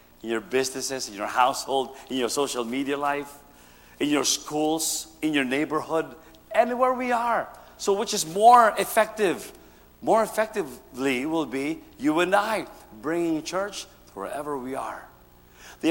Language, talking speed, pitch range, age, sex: English, 145 wpm, 135-200 Hz, 50-69, male